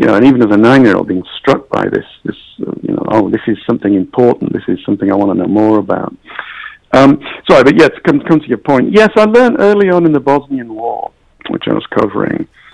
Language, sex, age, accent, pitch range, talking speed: English, male, 60-79, British, 100-135 Hz, 245 wpm